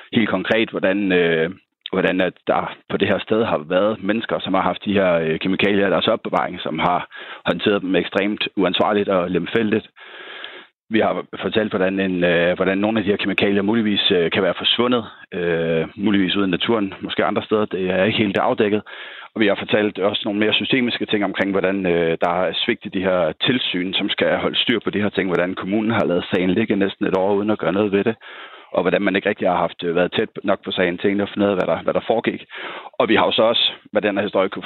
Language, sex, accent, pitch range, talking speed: Danish, male, native, 90-105 Hz, 230 wpm